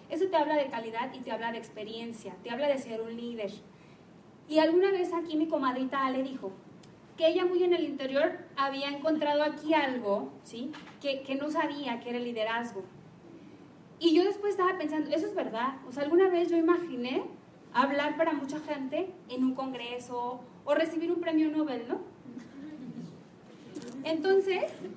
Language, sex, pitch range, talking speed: Spanish, female, 250-320 Hz, 170 wpm